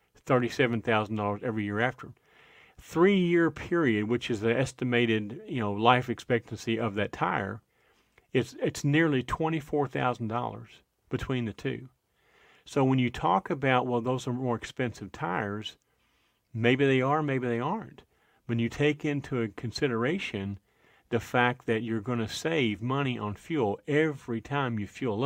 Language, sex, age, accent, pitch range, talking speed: English, male, 40-59, American, 115-140 Hz, 145 wpm